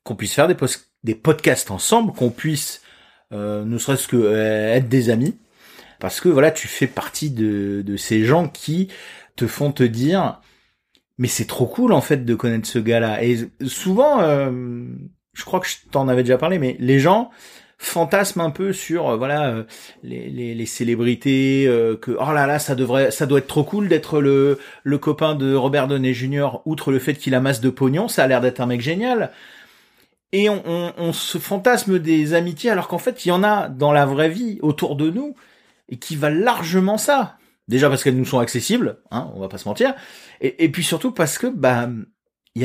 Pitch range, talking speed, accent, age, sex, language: 125-170 Hz, 210 wpm, French, 30-49, male, French